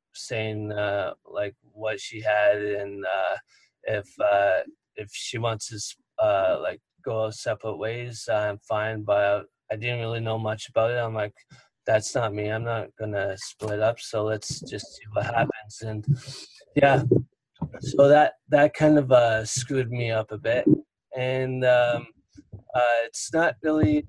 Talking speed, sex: 160 wpm, male